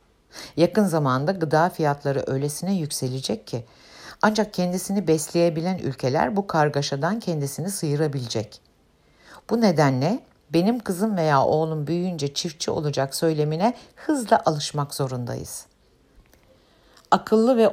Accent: native